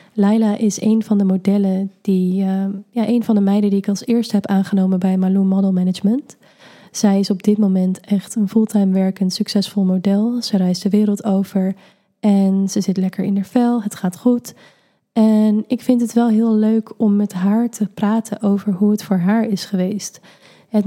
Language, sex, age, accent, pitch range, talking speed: Dutch, female, 20-39, Dutch, 190-210 Hz, 200 wpm